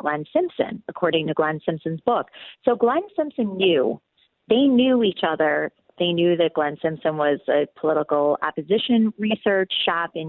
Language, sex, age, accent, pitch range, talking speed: English, female, 40-59, American, 160-225 Hz, 155 wpm